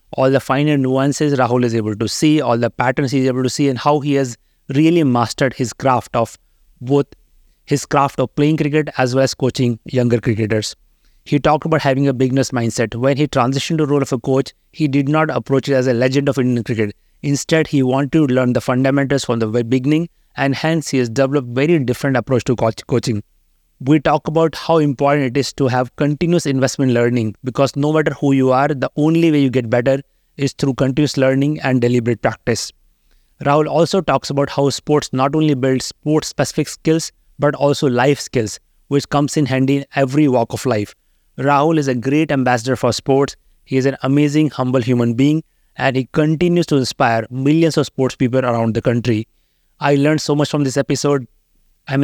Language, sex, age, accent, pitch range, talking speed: English, male, 30-49, Indian, 125-145 Hz, 205 wpm